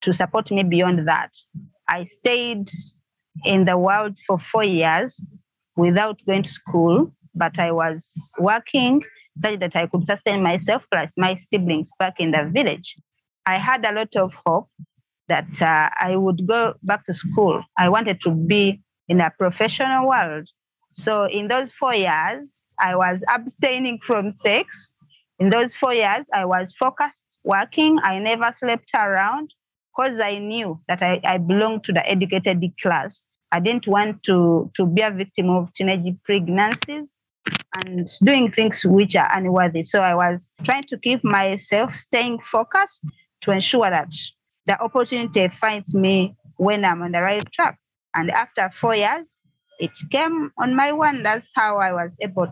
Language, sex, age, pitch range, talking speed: English, female, 30-49, 175-220 Hz, 160 wpm